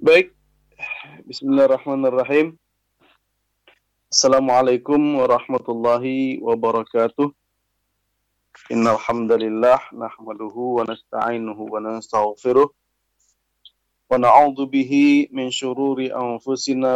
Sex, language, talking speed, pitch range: male, English, 70 wpm, 115-130 Hz